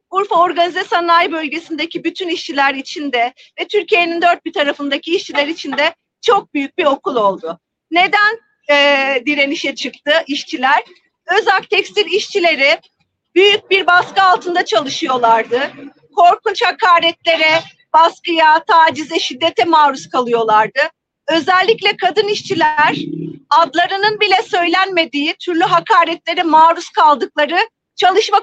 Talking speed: 110 wpm